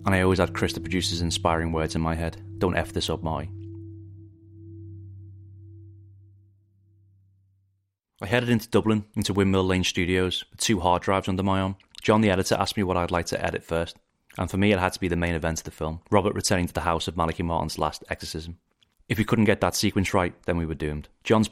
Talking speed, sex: 220 wpm, male